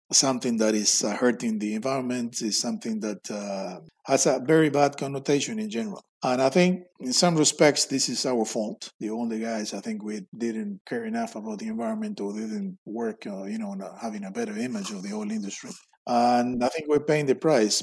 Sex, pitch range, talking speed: male, 120-155 Hz, 200 wpm